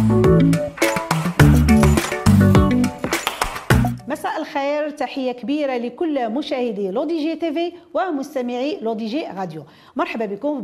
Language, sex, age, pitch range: French, female, 50-69, 200-335 Hz